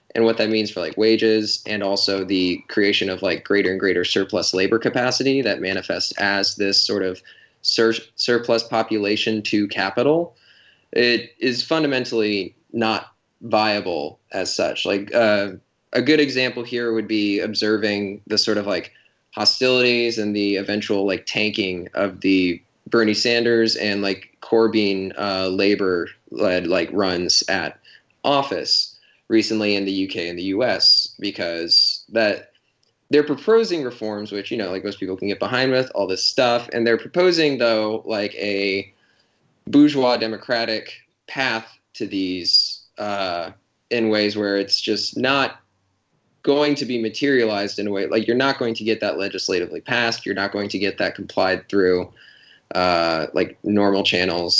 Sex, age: male, 20-39